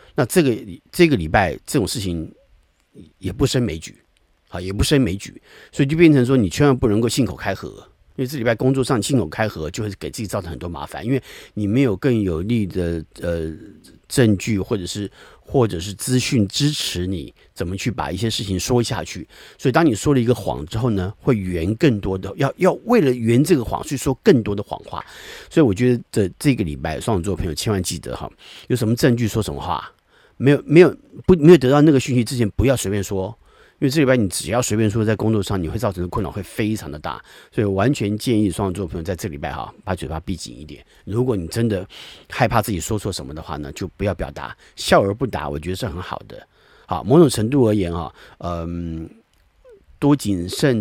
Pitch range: 90-130 Hz